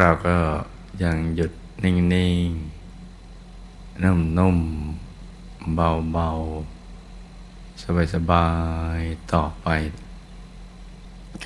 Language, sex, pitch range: Thai, male, 80-90 Hz